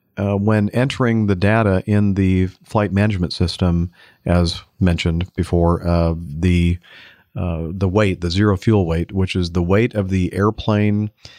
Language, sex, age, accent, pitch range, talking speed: English, male, 50-69, American, 85-105 Hz, 155 wpm